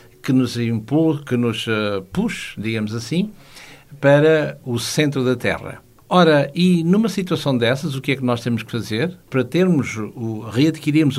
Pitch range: 120-160 Hz